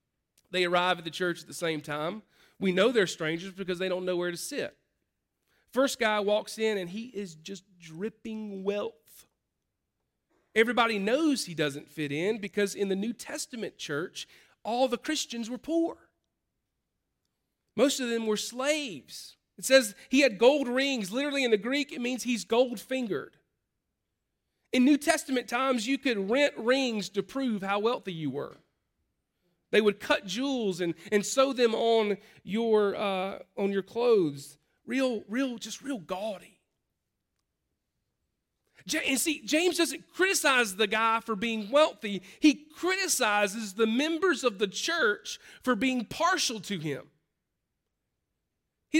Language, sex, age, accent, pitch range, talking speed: English, male, 40-59, American, 190-265 Hz, 150 wpm